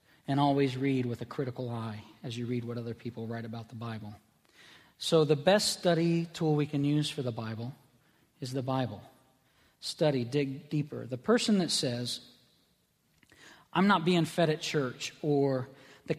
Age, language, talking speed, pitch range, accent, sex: 40-59, English, 170 wpm, 130-165 Hz, American, male